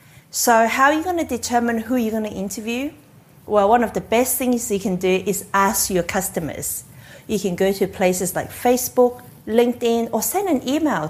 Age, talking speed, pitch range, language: 40-59, 200 wpm, 190-245 Hz, English